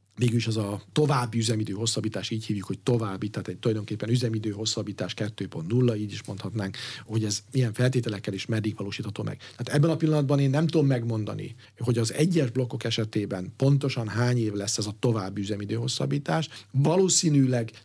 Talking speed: 160 wpm